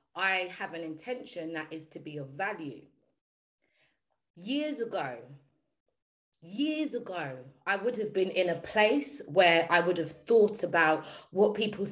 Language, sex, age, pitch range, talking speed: English, female, 30-49, 160-230 Hz, 145 wpm